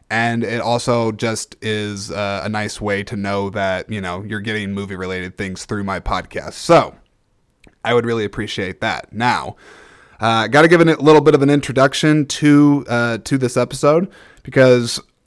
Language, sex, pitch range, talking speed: English, male, 105-130 Hz, 175 wpm